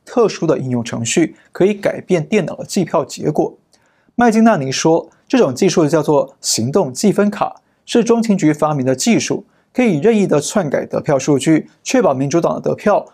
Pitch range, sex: 140-195 Hz, male